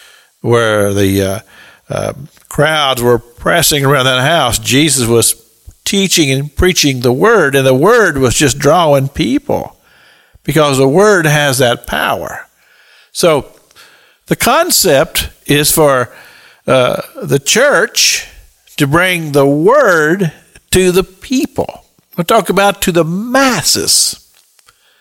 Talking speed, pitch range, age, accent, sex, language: 120 wpm, 125-175 Hz, 50-69, American, male, English